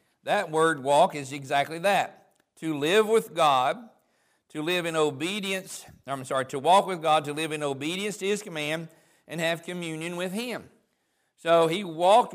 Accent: American